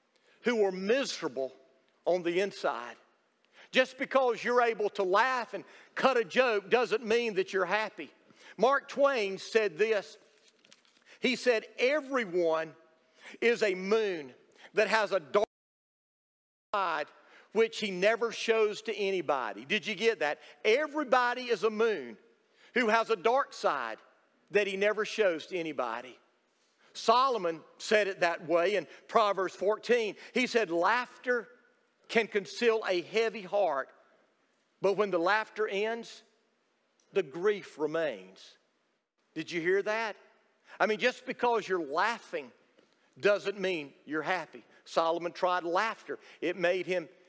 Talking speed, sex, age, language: 135 wpm, male, 50-69, English